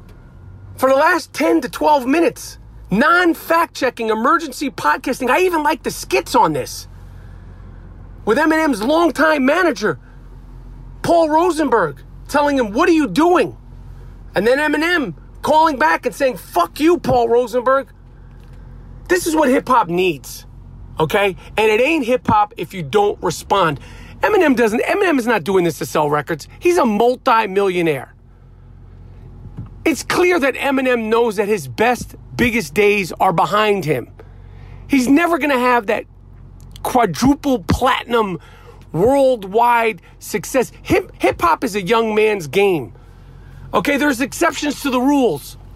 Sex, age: male, 40-59